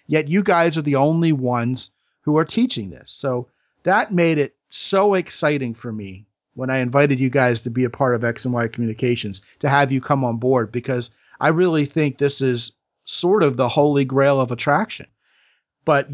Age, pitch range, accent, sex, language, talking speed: 40-59, 120-150 Hz, American, male, English, 195 wpm